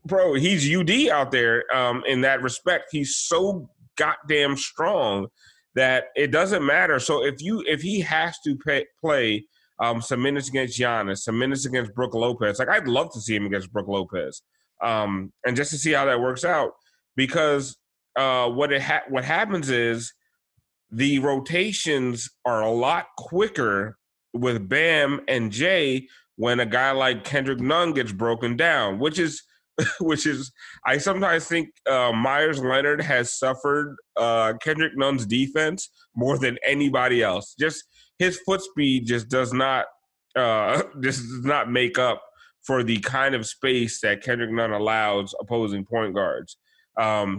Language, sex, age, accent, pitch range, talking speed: English, male, 30-49, American, 120-145 Hz, 160 wpm